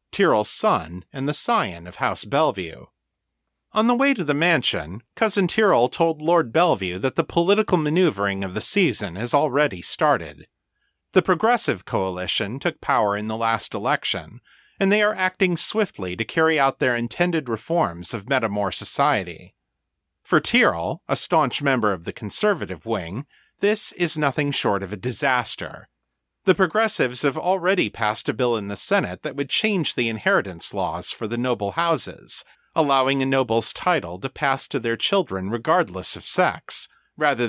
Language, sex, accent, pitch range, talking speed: English, male, American, 105-165 Hz, 160 wpm